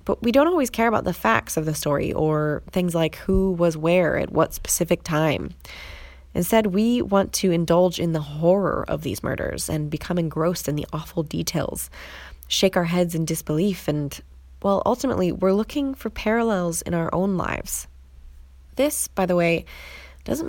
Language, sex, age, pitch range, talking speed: English, female, 20-39, 140-195 Hz, 175 wpm